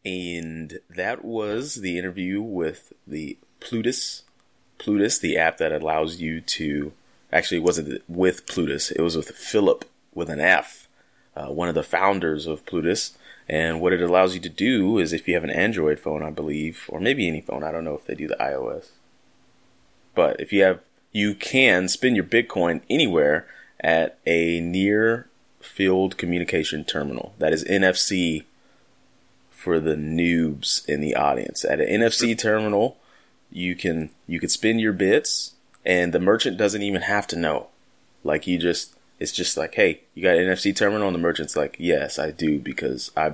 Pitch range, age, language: 80-95 Hz, 30-49, English